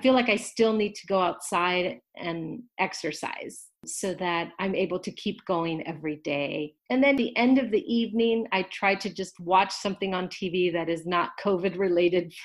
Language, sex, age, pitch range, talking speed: English, female, 40-59, 175-220 Hz, 190 wpm